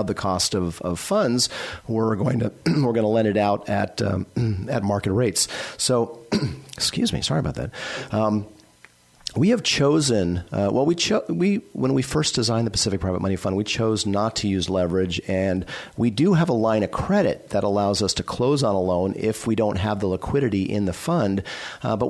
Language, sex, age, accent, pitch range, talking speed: English, male, 40-59, American, 95-115 Hz, 205 wpm